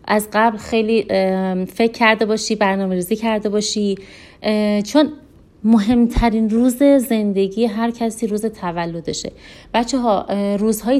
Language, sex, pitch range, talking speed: Persian, female, 195-235 Hz, 110 wpm